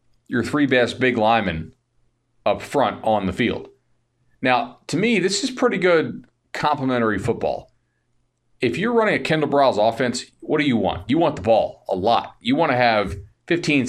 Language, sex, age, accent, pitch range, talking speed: English, male, 40-59, American, 110-135 Hz, 175 wpm